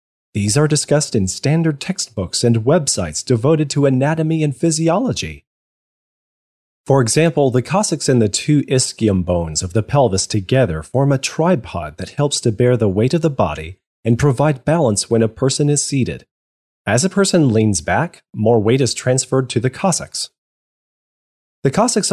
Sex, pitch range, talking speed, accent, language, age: male, 105-145 Hz, 165 wpm, American, English, 30-49